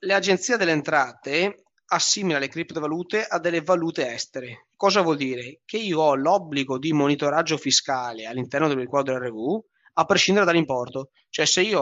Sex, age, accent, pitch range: male, 20-39, native, 135-175 Hz